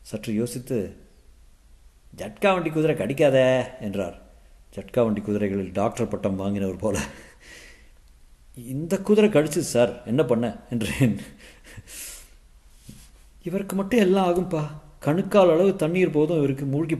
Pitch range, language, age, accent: 100-150 Hz, Tamil, 50-69, native